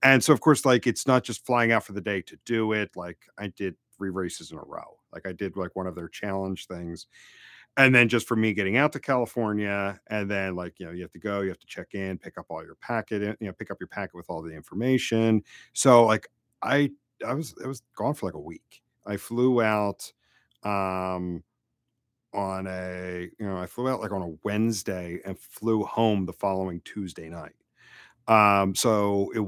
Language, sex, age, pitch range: English, male, 40-59, 95-115 Hz